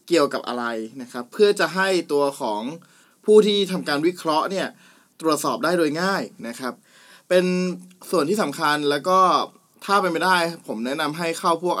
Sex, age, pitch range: male, 20-39, 130-180 Hz